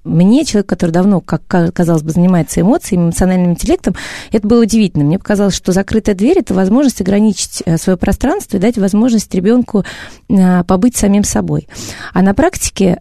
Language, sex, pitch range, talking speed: Russian, female, 170-205 Hz, 155 wpm